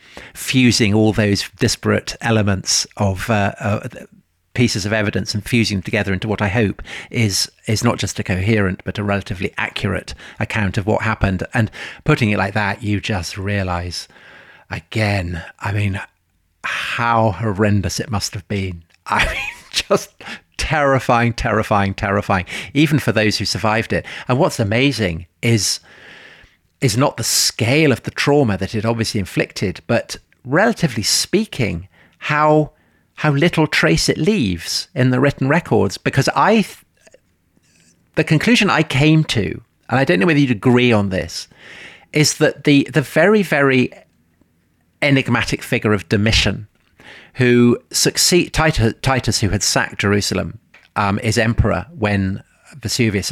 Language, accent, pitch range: English, British, 100-130 Hz